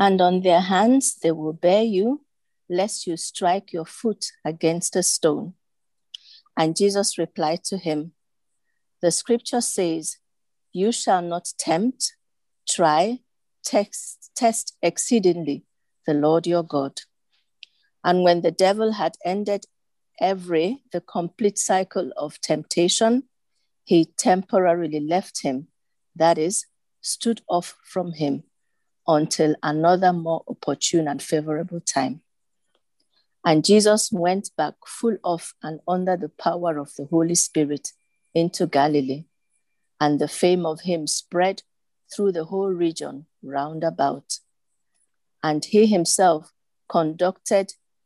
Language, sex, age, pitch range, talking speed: English, female, 50-69, 155-195 Hz, 120 wpm